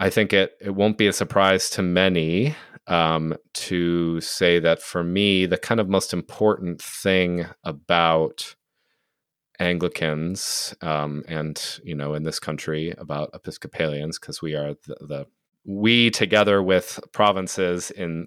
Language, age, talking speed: English, 30-49, 140 wpm